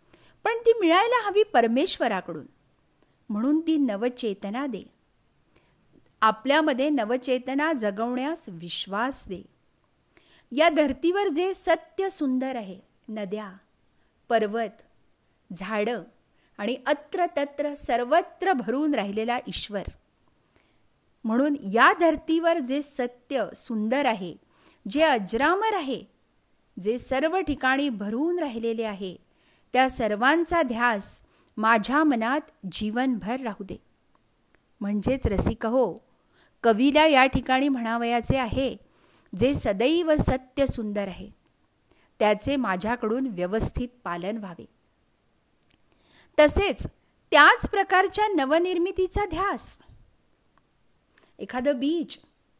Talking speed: 85 wpm